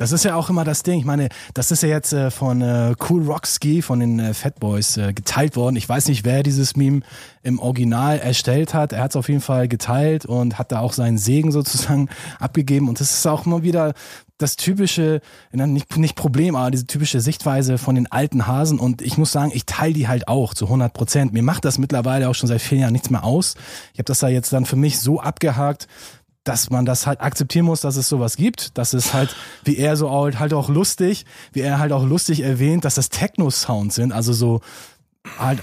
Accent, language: German, German